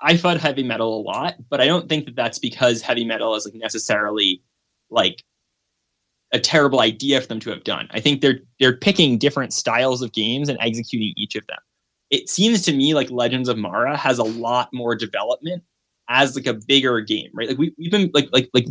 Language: English